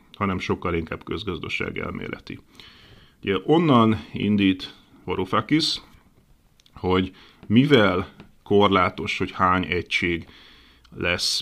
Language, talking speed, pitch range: Hungarian, 85 wpm, 90-110 Hz